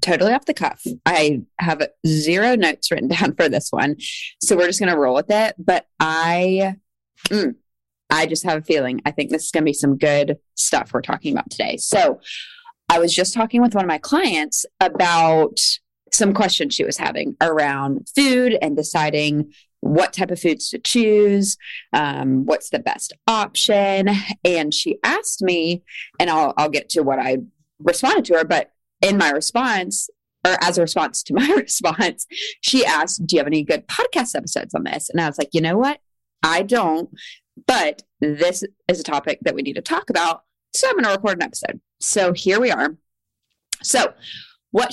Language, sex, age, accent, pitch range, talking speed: English, female, 20-39, American, 155-215 Hz, 190 wpm